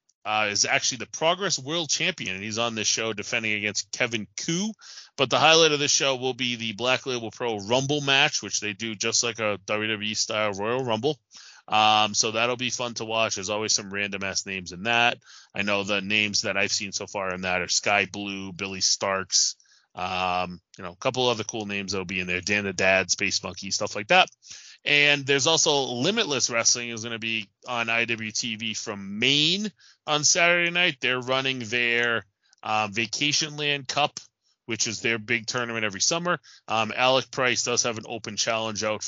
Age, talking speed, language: 20-39, 195 wpm, English